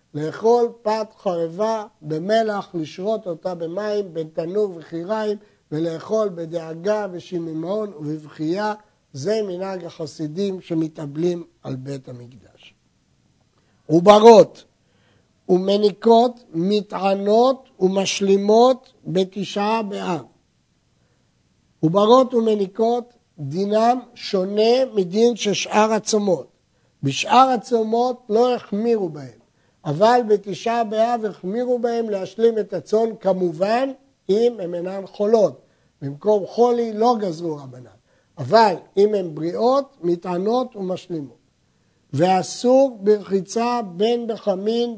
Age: 60-79